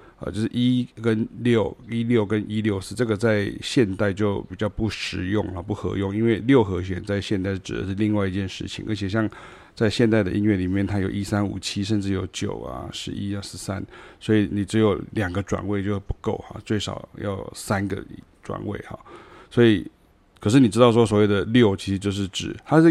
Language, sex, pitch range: Chinese, male, 95-110 Hz